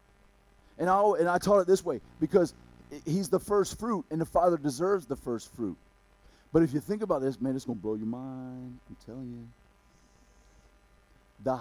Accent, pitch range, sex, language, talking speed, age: American, 110-185 Hz, male, English, 190 wpm, 50-69